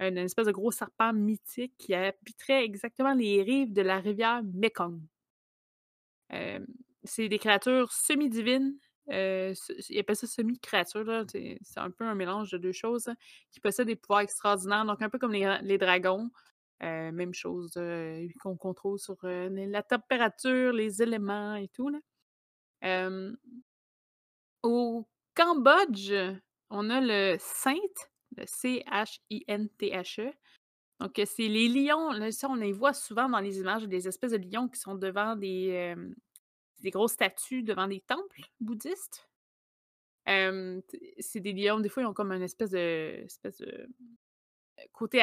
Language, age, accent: French, 20-39, Canadian